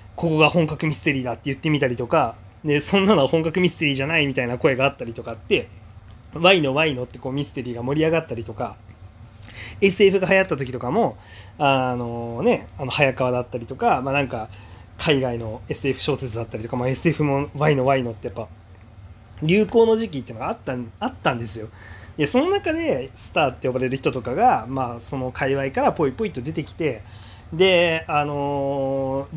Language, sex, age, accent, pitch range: Japanese, male, 20-39, native, 115-160 Hz